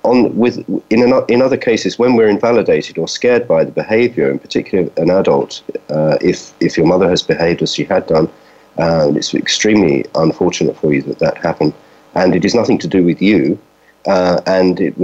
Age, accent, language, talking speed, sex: 40-59, British, English, 190 wpm, male